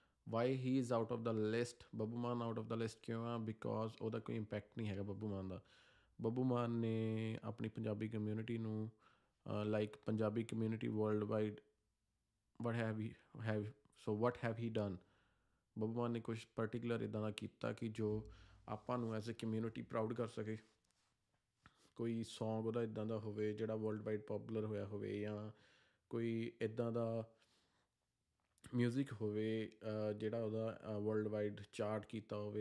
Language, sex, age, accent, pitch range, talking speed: English, male, 20-39, Indian, 105-115 Hz, 110 wpm